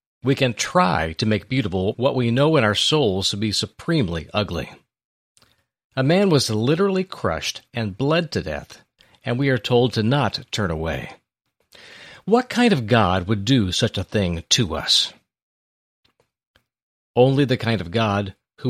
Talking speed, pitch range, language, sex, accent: 160 wpm, 95-135 Hz, English, male, American